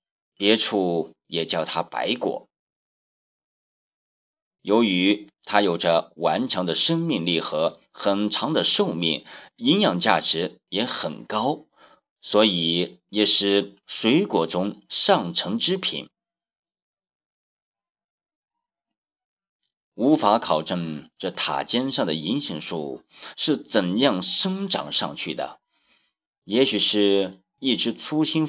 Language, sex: Chinese, male